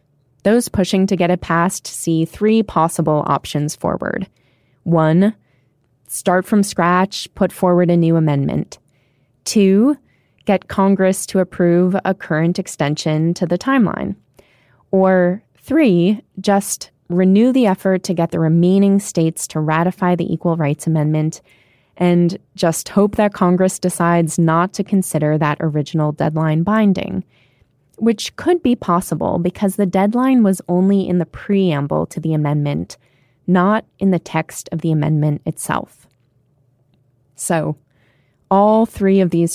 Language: English